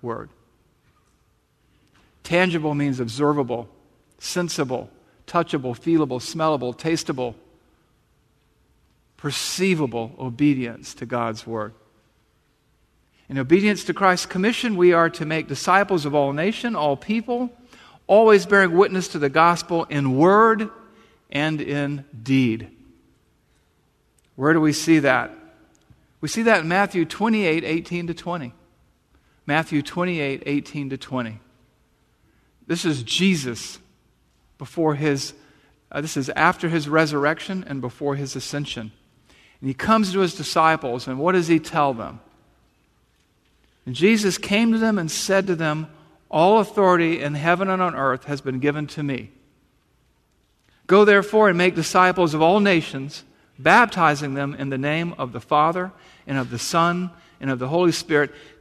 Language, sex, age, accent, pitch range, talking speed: English, male, 50-69, American, 135-180 Hz, 135 wpm